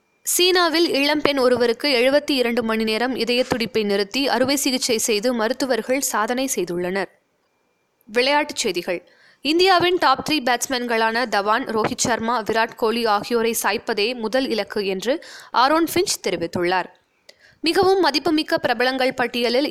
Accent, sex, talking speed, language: native, female, 120 wpm, Tamil